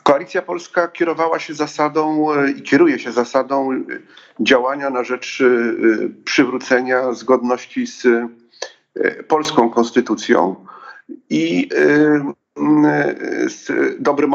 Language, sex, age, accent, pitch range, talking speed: Polish, male, 40-59, native, 115-150 Hz, 85 wpm